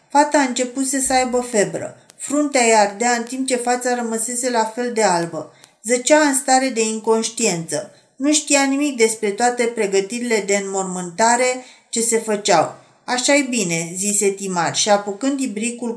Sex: female